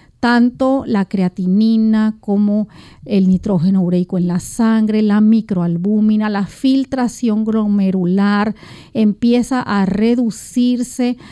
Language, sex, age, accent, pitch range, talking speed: English, female, 40-59, American, 205-250 Hz, 95 wpm